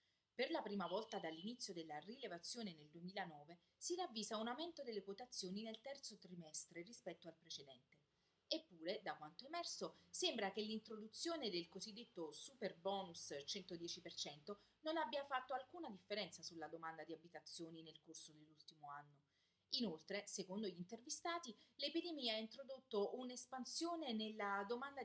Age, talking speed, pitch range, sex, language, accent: 30-49, 135 wpm, 170-245 Hz, female, Italian, native